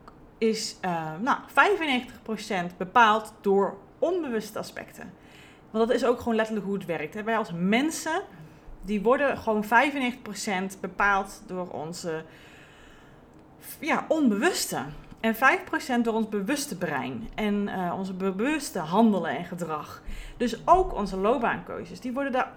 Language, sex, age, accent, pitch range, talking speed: Dutch, female, 30-49, Dutch, 175-235 Hz, 125 wpm